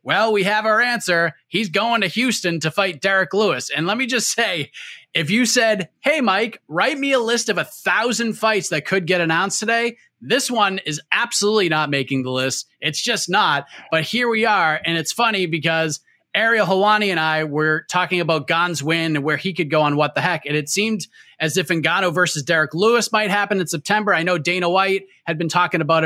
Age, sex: 30-49, male